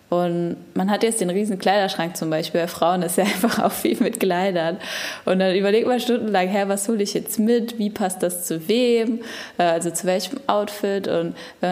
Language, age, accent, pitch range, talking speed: German, 10-29, German, 175-220 Hz, 205 wpm